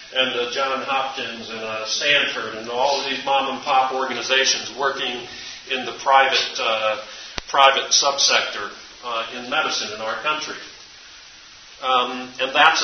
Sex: male